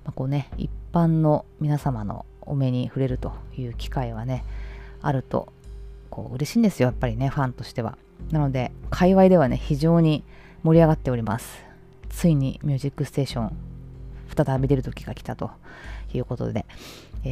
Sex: female